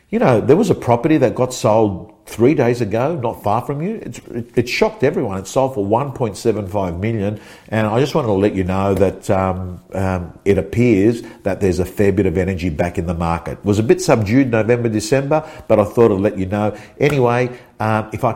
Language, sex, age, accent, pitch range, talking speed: English, male, 50-69, Australian, 100-125 Hz, 220 wpm